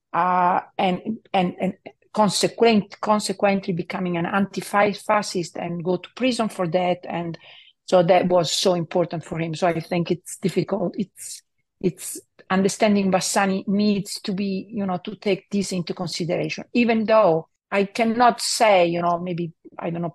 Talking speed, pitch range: 160 wpm, 175-200 Hz